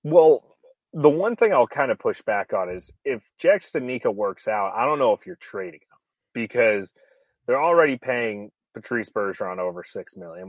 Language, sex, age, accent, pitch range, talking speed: English, male, 30-49, American, 100-140 Hz, 185 wpm